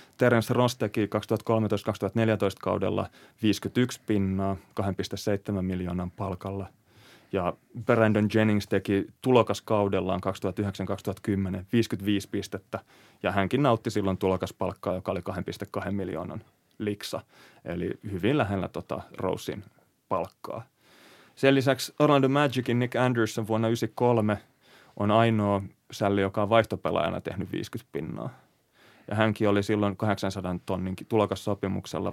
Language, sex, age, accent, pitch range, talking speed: Finnish, male, 30-49, native, 95-120 Hz, 110 wpm